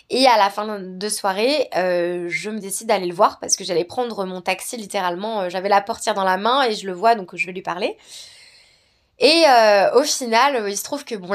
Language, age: French, 20-39